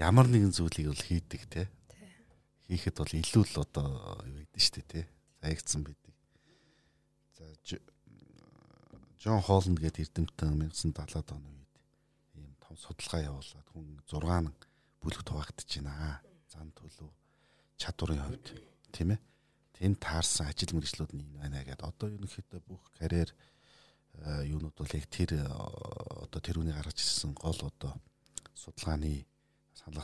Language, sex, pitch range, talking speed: Russian, male, 75-90 Hz, 230 wpm